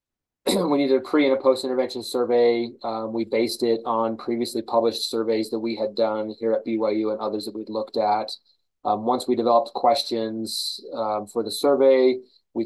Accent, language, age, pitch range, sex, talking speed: American, English, 20-39, 110-120 Hz, male, 185 wpm